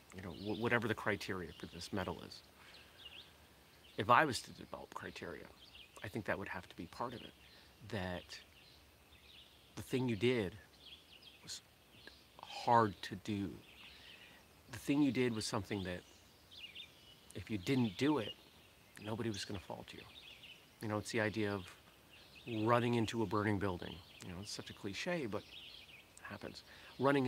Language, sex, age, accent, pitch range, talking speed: English, male, 40-59, American, 90-115 Hz, 160 wpm